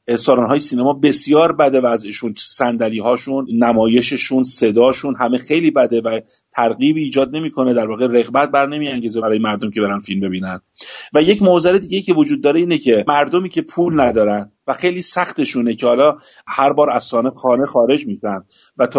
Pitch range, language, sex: 120-165 Hz, Persian, male